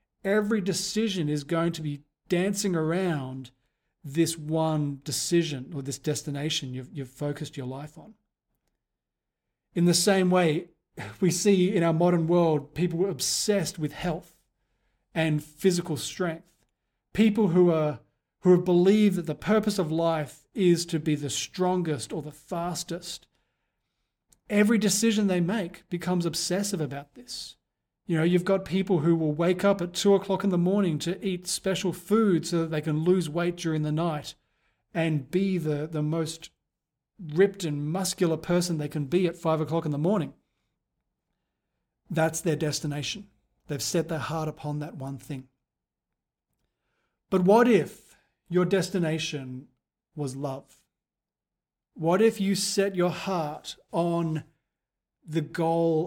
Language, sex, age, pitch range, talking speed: English, male, 40-59, 150-185 Hz, 150 wpm